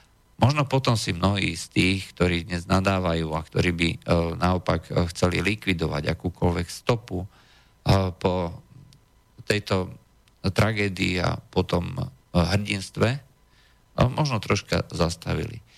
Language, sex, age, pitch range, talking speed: Slovak, male, 50-69, 90-110 Hz, 100 wpm